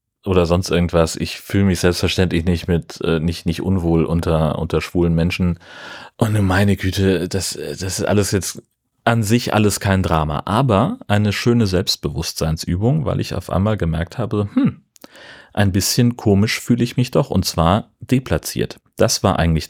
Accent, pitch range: German, 85-110 Hz